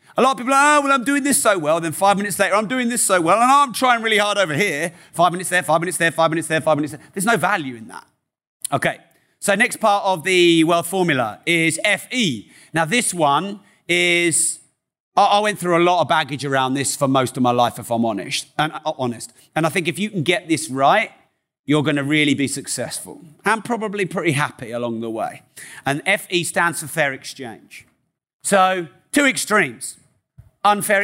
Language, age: English, 40-59